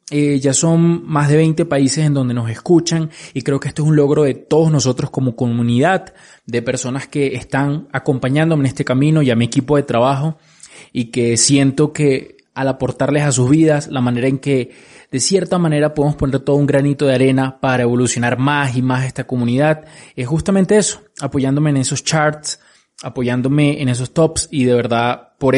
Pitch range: 130-160 Hz